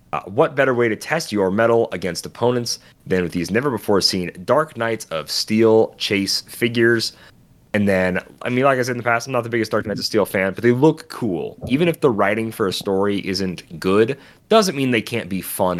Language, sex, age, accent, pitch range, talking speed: English, male, 30-49, American, 85-120 Hz, 220 wpm